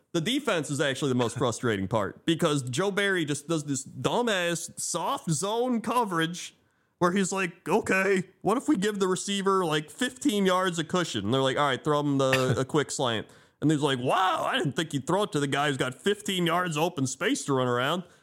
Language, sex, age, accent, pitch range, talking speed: English, male, 30-49, American, 120-185 Hz, 215 wpm